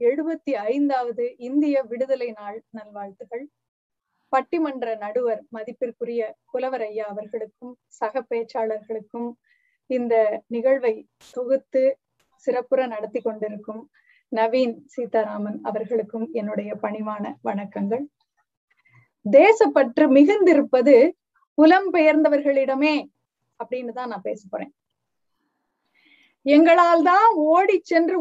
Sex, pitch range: female, 240-335 Hz